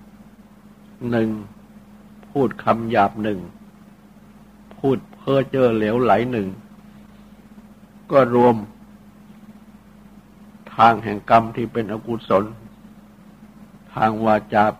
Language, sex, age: Thai, male, 60-79